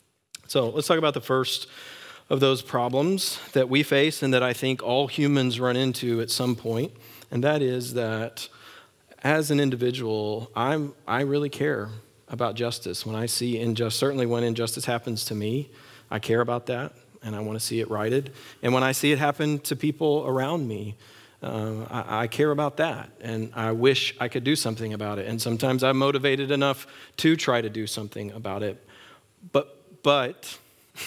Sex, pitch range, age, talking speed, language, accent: male, 120-140 Hz, 40-59, 185 wpm, English, American